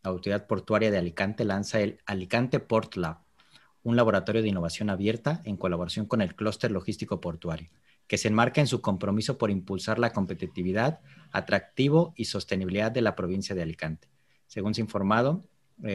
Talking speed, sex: 165 wpm, male